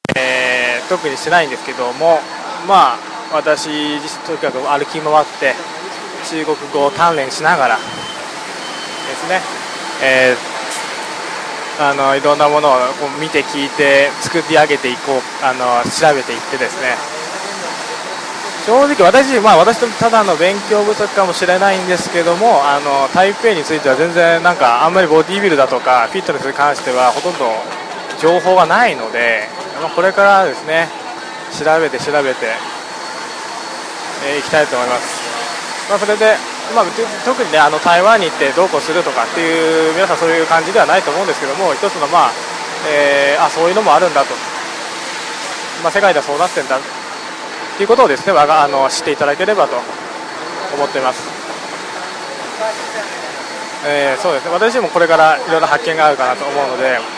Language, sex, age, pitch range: Japanese, male, 20-39, 145-180 Hz